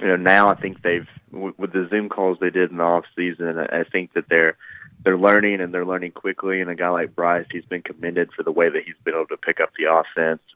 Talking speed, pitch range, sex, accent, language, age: 260 wpm, 85-95 Hz, male, American, English, 20-39